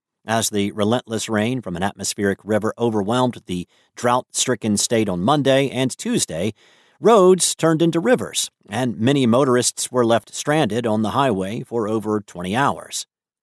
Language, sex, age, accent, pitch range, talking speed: English, male, 50-69, American, 110-150 Hz, 145 wpm